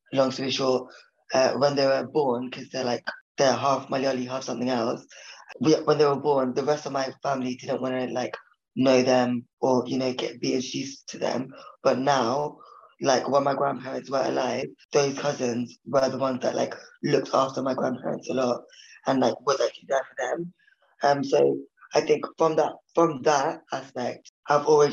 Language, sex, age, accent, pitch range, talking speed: English, female, 20-39, British, 130-145 Hz, 195 wpm